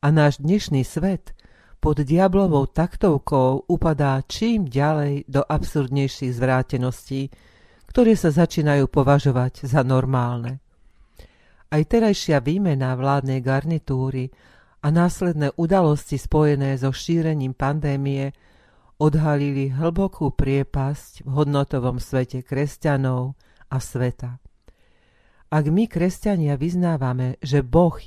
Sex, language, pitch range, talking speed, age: female, Slovak, 130-160 Hz, 100 wpm, 40-59